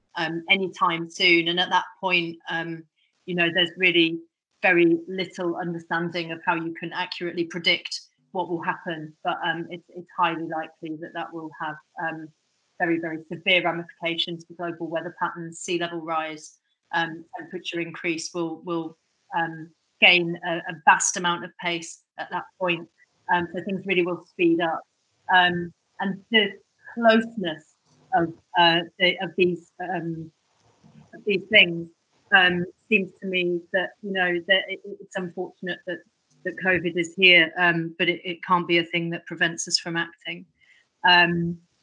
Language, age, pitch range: English, 30-49, 170-185 Hz